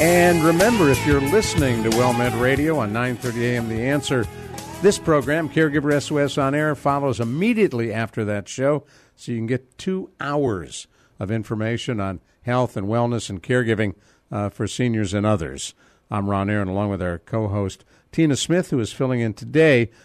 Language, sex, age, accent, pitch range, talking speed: English, male, 60-79, American, 115-140 Hz, 175 wpm